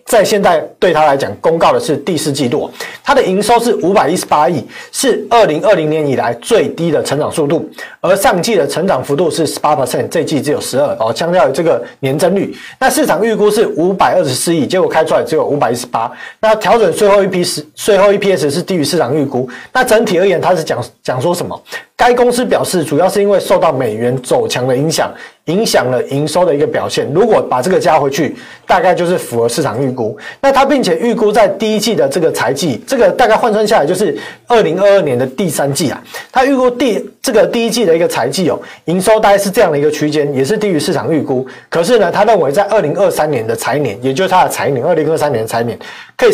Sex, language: male, Chinese